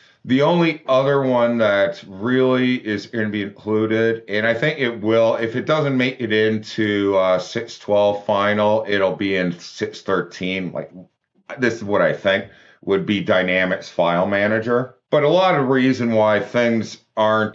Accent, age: American, 40-59